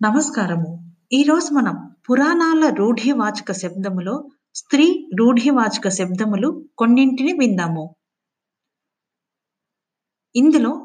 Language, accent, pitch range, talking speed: Telugu, native, 195-285 Hz, 65 wpm